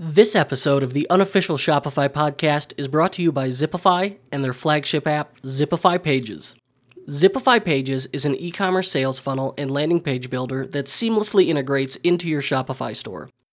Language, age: English, 30-49